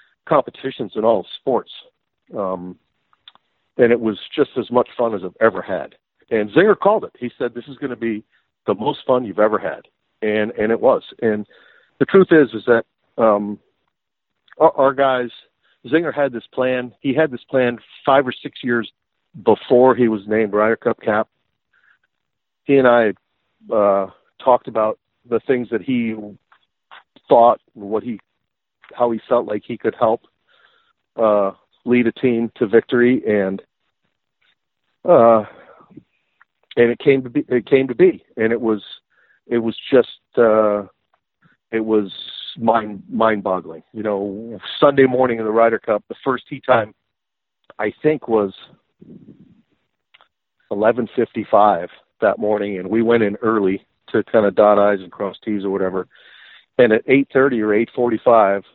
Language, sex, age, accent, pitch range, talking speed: English, male, 50-69, American, 105-125 Hz, 160 wpm